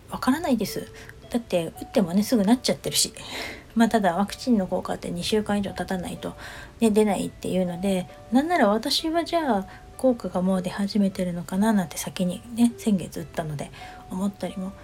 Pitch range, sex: 180-220 Hz, female